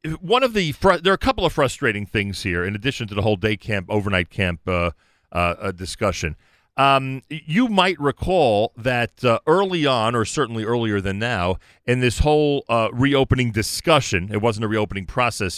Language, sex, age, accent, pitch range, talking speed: English, male, 40-59, American, 110-155 Hz, 185 wpm